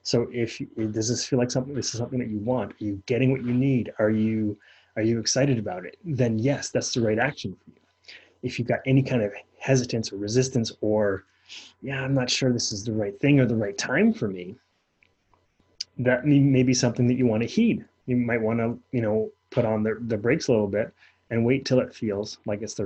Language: English